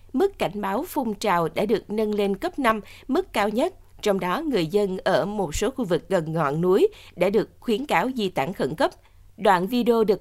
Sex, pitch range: female, 180-240 Hz